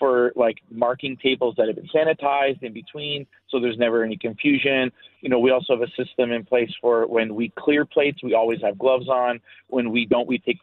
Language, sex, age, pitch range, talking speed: English, male, 30-49, 115-145 Hz, 220 wpm